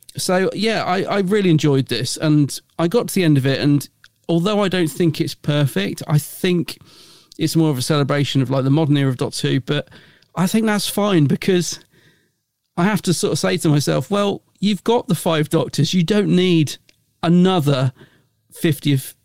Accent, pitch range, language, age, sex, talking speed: British, 135-165 Hz, English, 40-59, male, 195 wpm